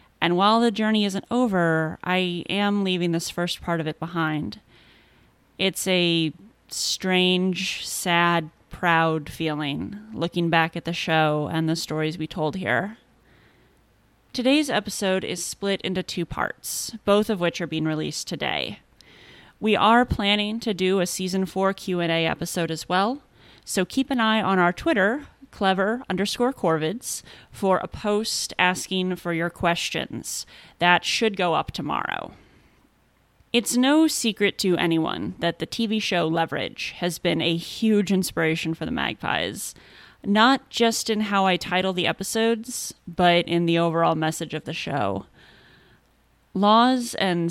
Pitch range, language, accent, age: 170-210 Hz, English, American, 30-49